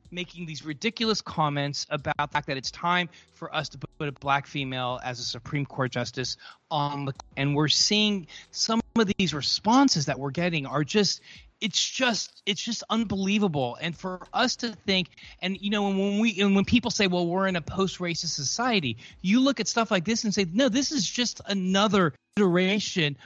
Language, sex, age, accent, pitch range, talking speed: English, male, 30-49, American, 140-190 Hz, 195 wpm